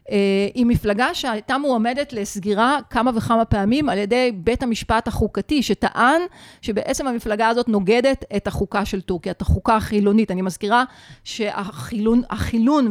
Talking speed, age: 130 wpm, 30-49